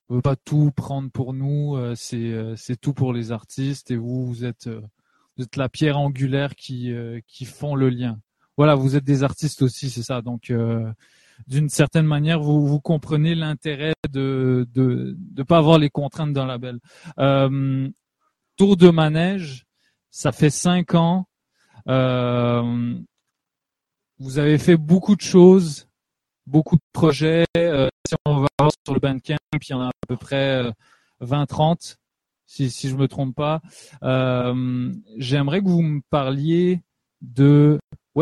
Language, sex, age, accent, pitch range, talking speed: French, male, 20-39, French, 130-155 Hz, 160 wpm